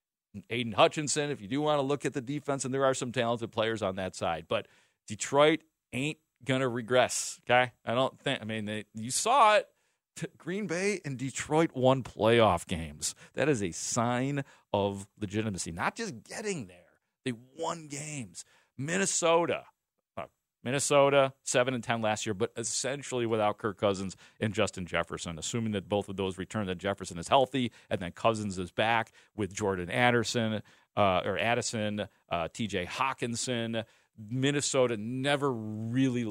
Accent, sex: American, male